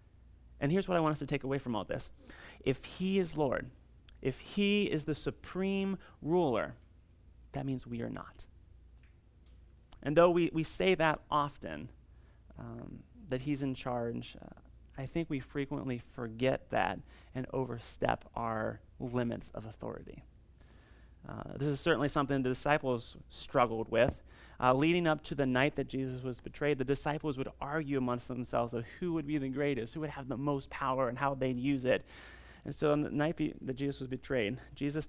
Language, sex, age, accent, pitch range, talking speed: English, male, 30-49, American, 120-150 Hz, 180 wpm